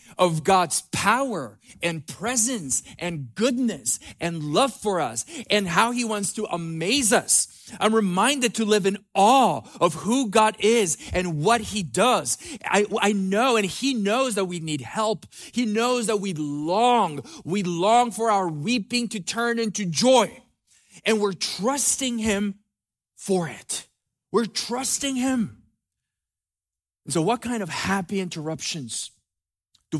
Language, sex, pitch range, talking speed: English, male, 150-215 Hz, 145 wpm